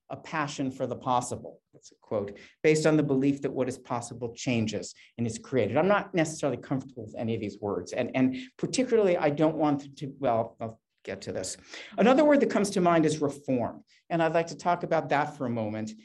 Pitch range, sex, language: 125-165 Hz, male, English